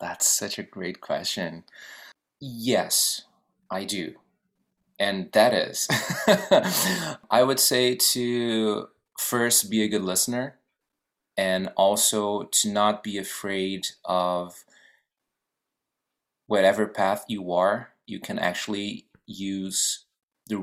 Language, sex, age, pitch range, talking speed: English, male, 30-49, 95-110 Hz, 105 wpm